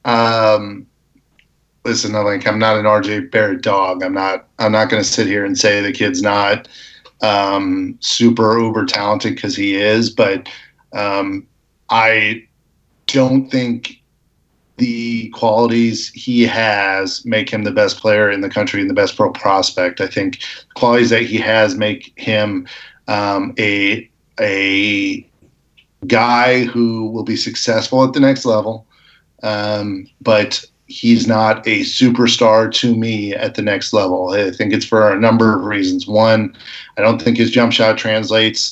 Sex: male